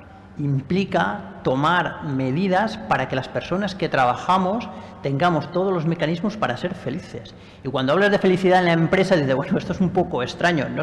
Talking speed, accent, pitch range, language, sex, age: 175 wpm, Spanish, 130-175 Hz, Spanish, male, 40-59